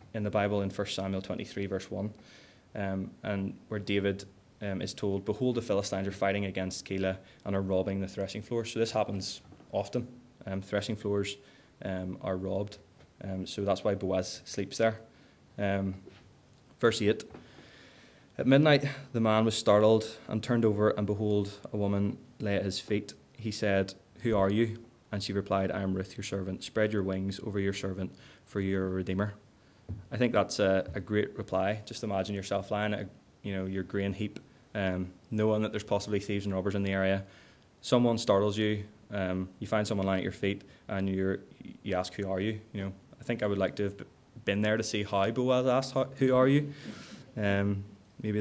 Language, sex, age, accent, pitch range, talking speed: English, male, 20-39, Irish, 95-110 Hz, 195 wpm